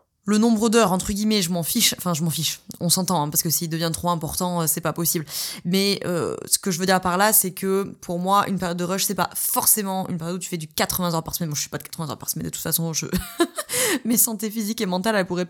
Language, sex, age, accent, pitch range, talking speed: French, female, 20-39, French, 170-205 Hz, 280 wpm